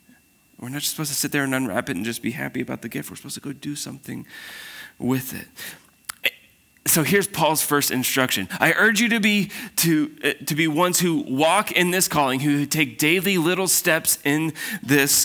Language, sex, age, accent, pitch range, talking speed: English, male, 20-39, American, 110-150 Hz, 200 wpm